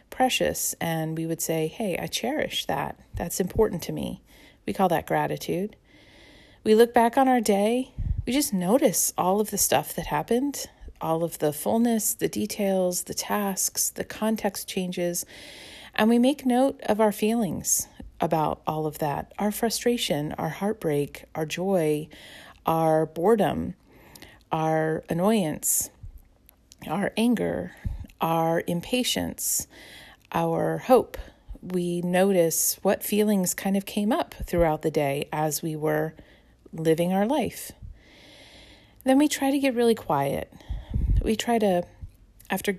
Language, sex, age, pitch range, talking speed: English, female, 40-59, 165-220 Hz, 135 wpm